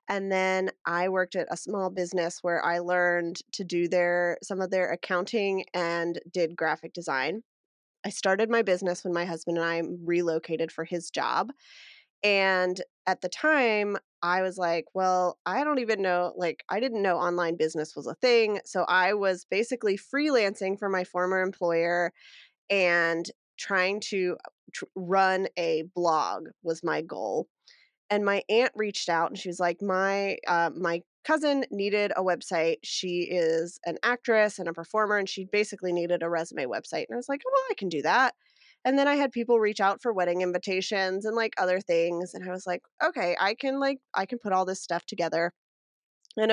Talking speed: 185 wpm